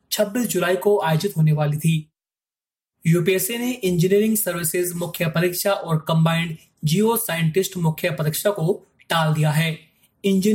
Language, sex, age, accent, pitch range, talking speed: Hindi, male, 20-39, native, 160-205 Hz, 125 wpm